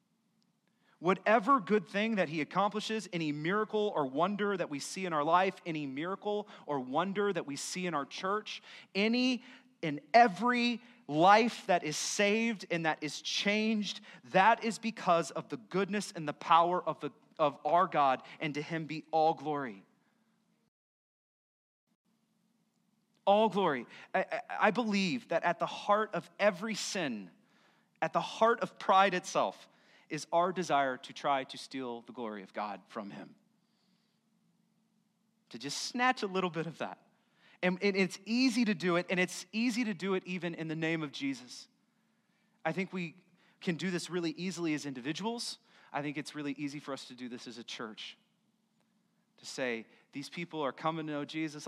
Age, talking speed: 30-49, 170 wpm